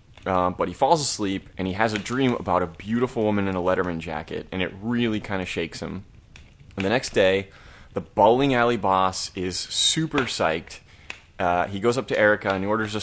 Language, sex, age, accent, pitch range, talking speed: English, male, 20-39, American, 90-120 Hz, 210 wpm